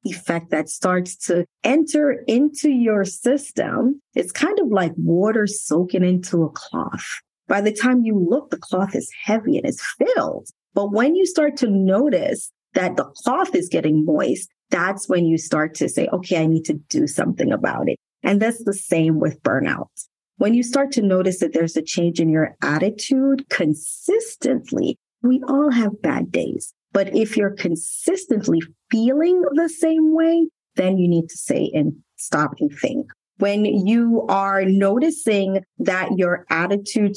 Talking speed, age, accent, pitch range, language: 165 wpm, 30-49, American, 180-275 Hz, English